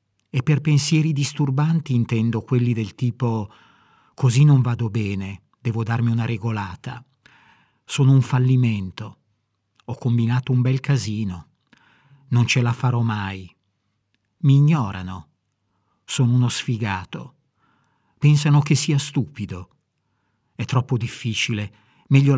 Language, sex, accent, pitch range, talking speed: Italian, male, native, 110-145 Hz, 115 wpm